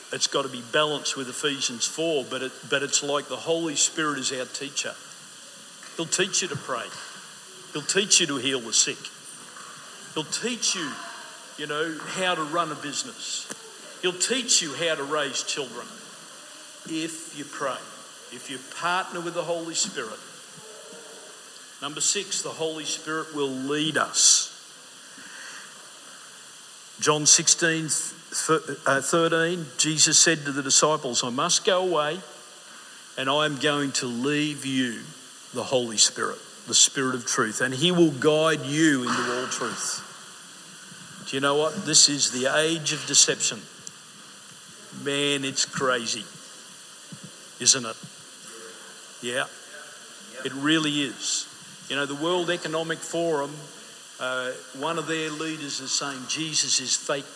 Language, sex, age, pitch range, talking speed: English, male, 50-69, 140-165 Hz, 140 wpm